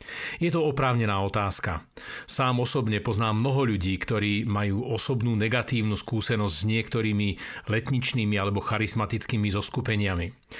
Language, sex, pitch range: Slovak, male, 105-130 Hz